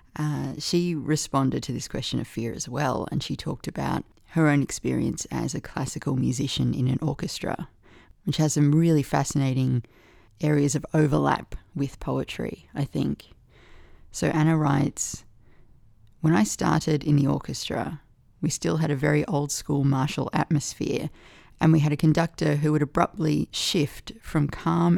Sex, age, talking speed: female, 30-49, 155 wpm